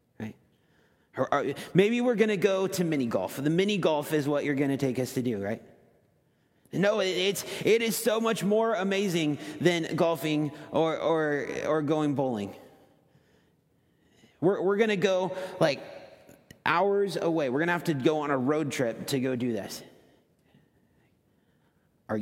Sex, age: male, 40-59